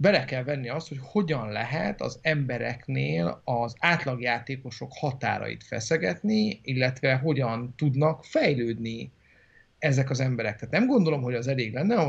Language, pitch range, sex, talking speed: Hungarian, 120-155 Hz, male, 135 wpm